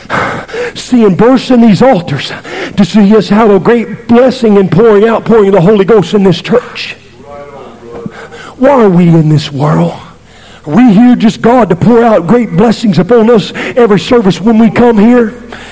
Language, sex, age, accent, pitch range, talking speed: English, male, 50-69, American, 205-255 Hz, 175 wpm